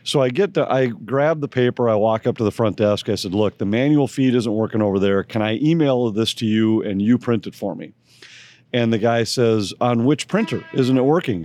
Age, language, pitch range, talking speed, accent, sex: 40-59, English, 120-160 Hz, 245 wpm, American, male